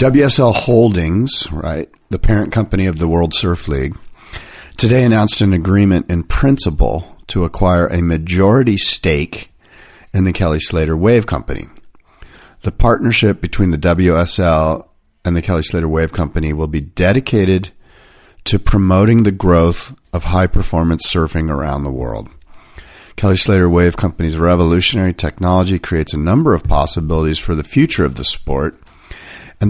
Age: 40-59